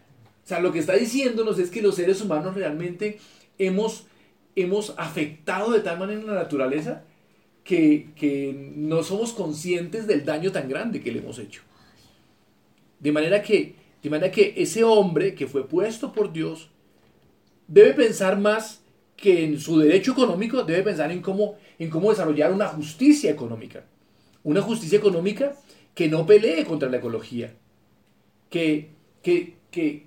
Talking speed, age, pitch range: 145 wpm, 40-59, 150-205 Hz